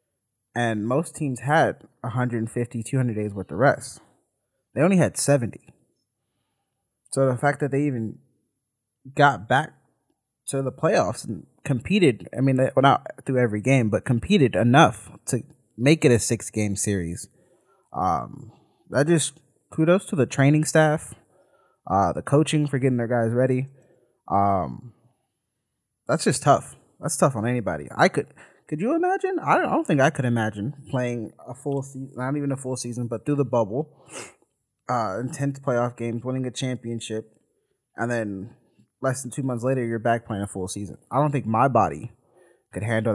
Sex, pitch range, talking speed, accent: male, 115-140 Hz, 165 wpm, American